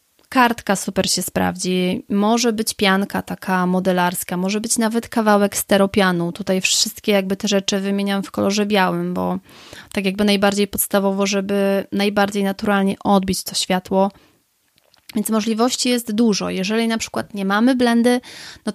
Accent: native